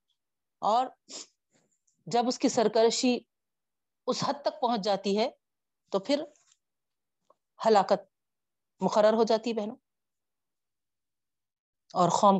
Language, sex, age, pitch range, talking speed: Urdu, female, 40-59, 185-230 Hz, 95 wpm